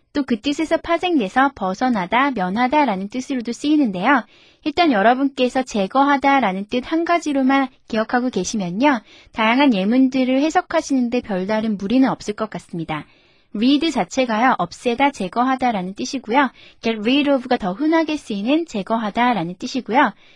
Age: 20-39